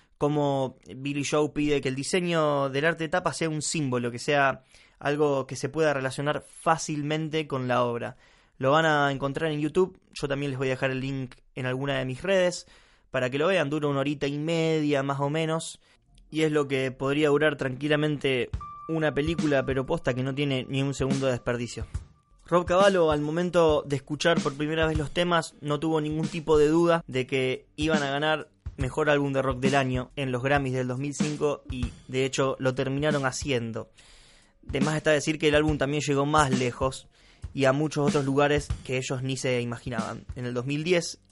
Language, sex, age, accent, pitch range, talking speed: Spanish, male, 20-39, Argentinian, 130-155 Hz, 200 wpm